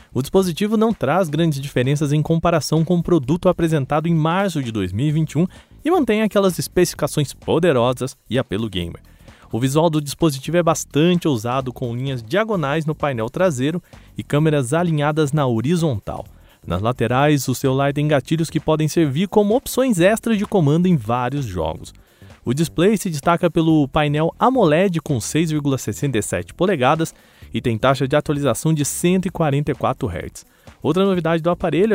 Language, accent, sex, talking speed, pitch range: Portuguese, Brazilian, male, 150 wpm, 135-180 Hz